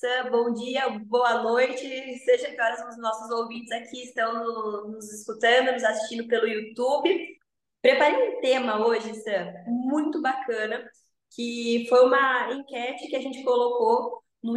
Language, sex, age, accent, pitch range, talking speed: Portuguese, female, 20-39, Brazilian, 230-275 Hz, 135 wpm